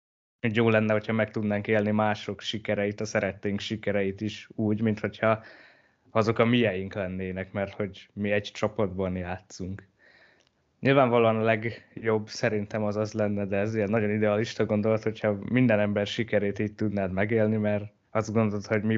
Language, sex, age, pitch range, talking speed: Hungarian, male, 20-39, 100-115 Hz, 155 wpm